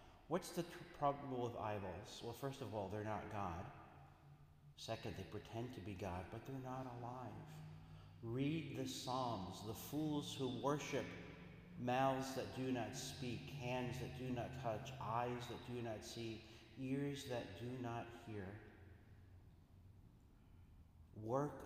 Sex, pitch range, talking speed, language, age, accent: male, 90-120 Hz, 140 wpm, English, 50-69, American